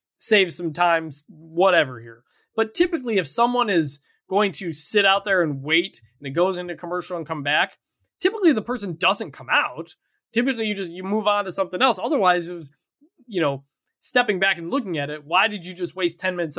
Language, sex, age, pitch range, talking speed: English, male, 20-39, 140-190 Hz, 210 wpm